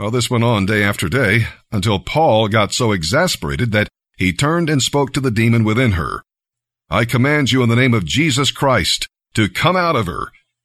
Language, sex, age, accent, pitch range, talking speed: English, male, 50-69, American, 105-130 Hz, 195 wpm